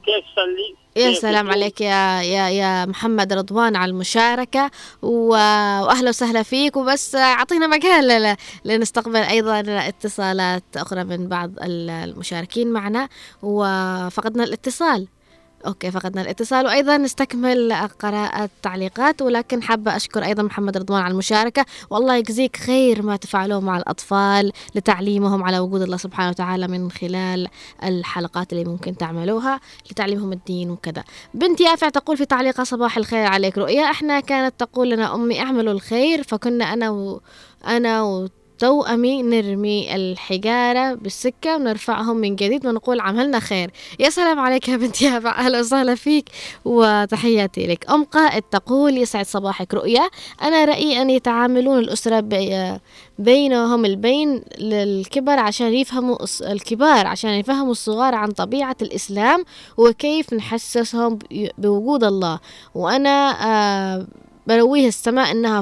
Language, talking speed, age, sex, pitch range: Arabic, 125 wpm, 20-39, female, 195-255 Hz